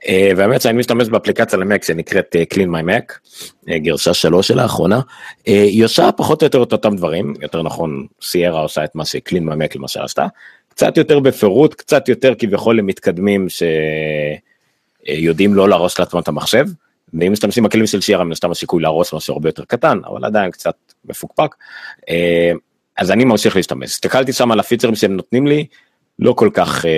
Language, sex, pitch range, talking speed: Hebrew, male, 80-105 Hz, 165 wpm